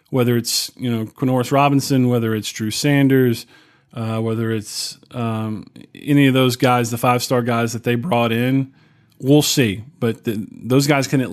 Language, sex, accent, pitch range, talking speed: English, male, American, 120-145 Hz, 170 wpm